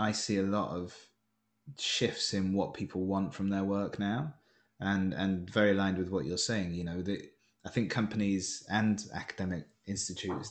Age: 20-39